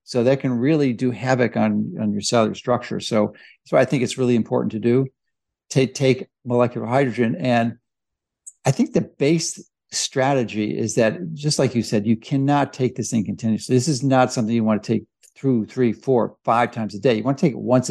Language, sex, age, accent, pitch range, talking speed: English, male, 60-79, American, 115-140 Hz, 210 wpm